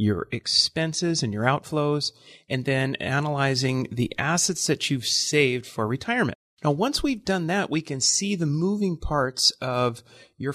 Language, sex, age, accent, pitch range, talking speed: English, male, 30-49, American, 120-165 Hz, 160 wpm